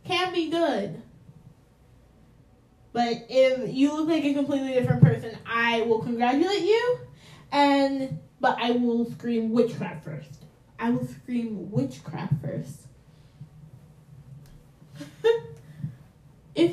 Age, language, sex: 10-29, English, female